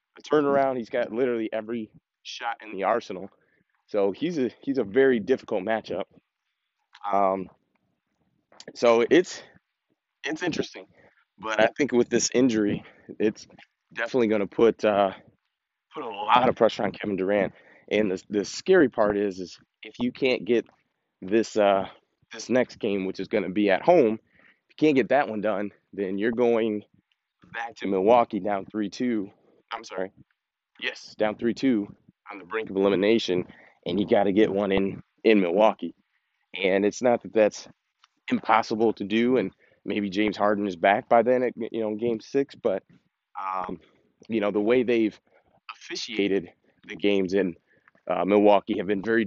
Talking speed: 165 wpm